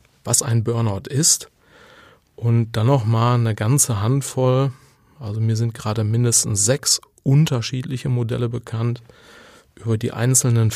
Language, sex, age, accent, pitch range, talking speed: German, male, 30-49, German, 110-130 Hz, 125 wpm